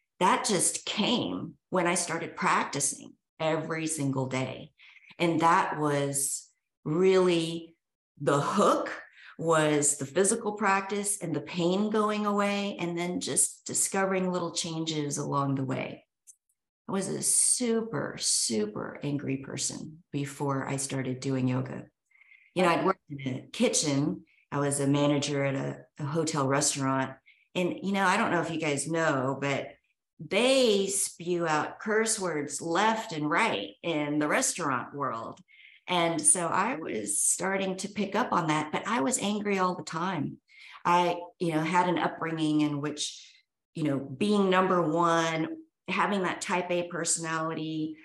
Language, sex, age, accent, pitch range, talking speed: English, female, 40-59, American, 150-190 Hz, 150 wpm